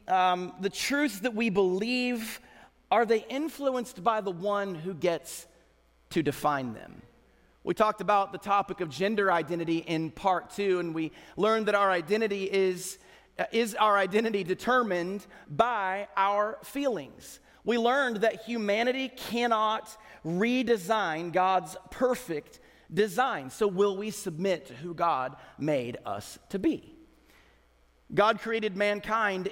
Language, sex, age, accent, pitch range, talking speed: English, male, 40-59, American, 180-225 Hz, 130 wpm